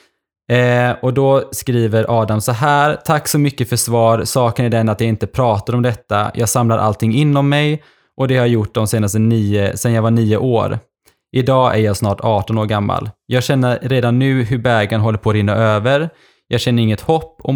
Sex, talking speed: male, 210 wpm